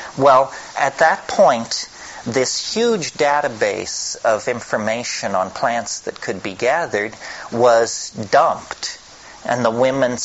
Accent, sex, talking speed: American, male, 115 wpm